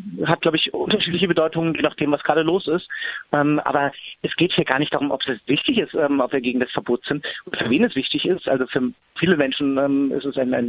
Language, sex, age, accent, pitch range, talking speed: German, male, 40-59, German, 130-150 Hz, 255 wpm